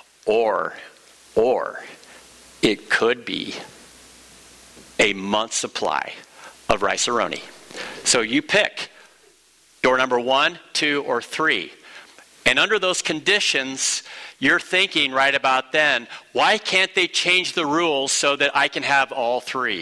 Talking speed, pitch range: 125 wpm, 125-160 Hz